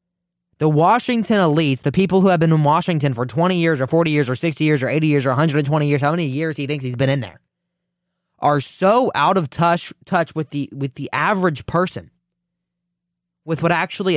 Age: 20-39